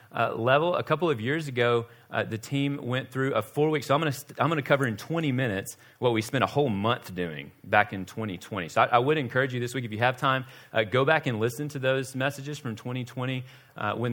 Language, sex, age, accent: English, male, 30-49, American